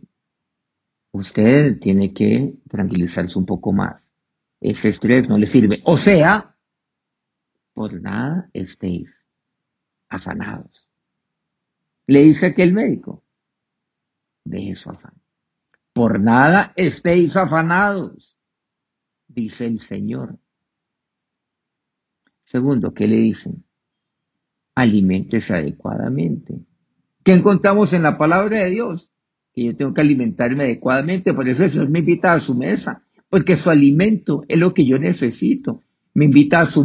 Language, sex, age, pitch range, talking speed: Spanish, male, 50-69, 130-185 Hz, 120 wpm